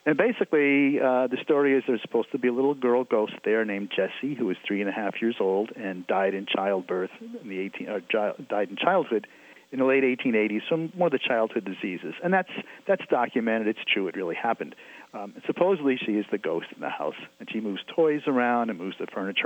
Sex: male